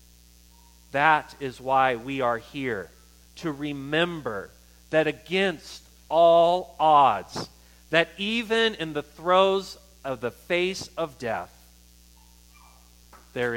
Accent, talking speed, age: American, 100 wpm, 40-59